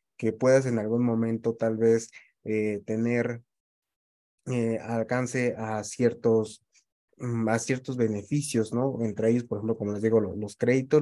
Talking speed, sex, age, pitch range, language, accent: 140 wpm, male, 20-39, 110-130 Hz, Spanish, Mexican